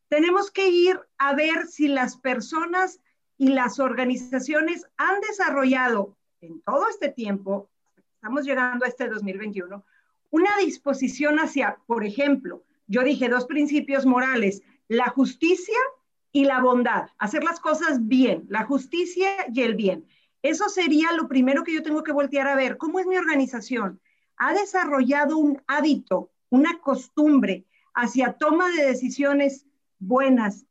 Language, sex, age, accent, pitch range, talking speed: Spanish, female, 40-59, Mexican, 245-315 Hz, 140 wpm